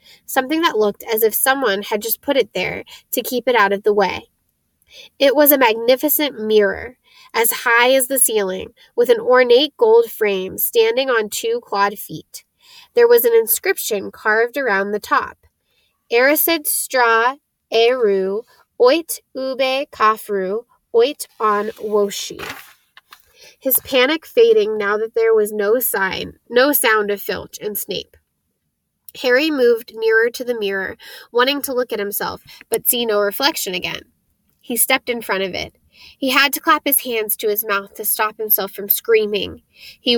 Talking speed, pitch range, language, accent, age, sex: 160 wpm, 215-315 Hz, English, American, 10-29, female